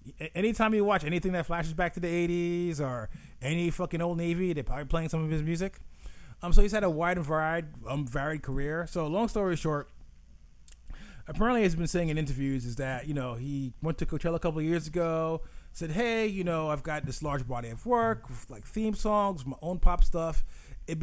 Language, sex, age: English, male, 30-49